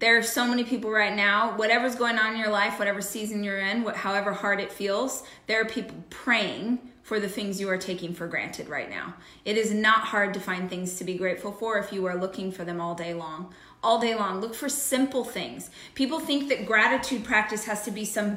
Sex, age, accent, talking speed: female, 20-39, American, 230 wpm